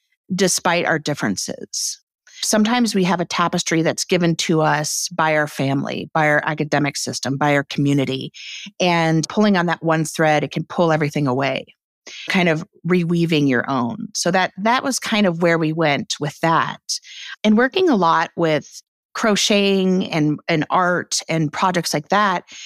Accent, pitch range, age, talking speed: American, 155-195 Hz, 40-59, 165 wpm